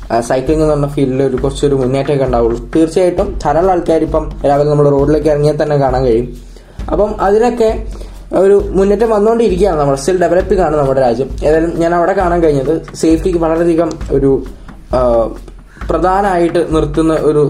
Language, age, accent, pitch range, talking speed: Malayalam, 20-39, native, 135-180 Hz, 135 wpm